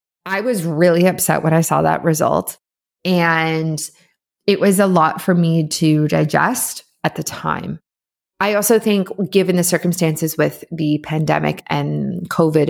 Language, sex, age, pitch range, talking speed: English, female, 20-39, 160-190 Hz, 150 wpm